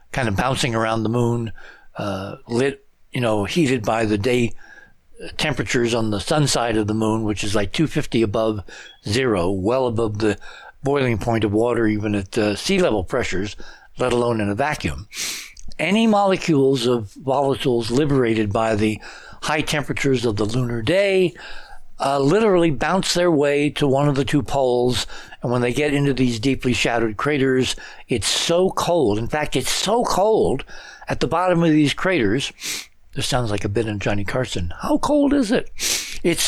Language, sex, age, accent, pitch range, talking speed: English, male, 60-79, American, 115-150 Hz, 175 wpm